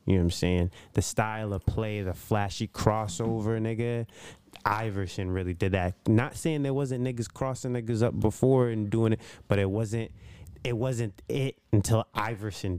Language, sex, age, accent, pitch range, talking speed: English, male, 20-39, American, 100-120 Hz, 175 wpm